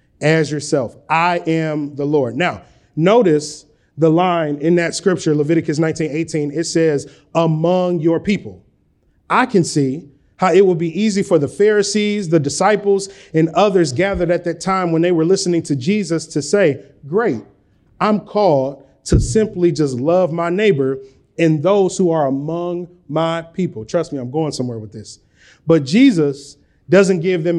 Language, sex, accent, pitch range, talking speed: English, male, American, 150-200 Hz, 165 wpm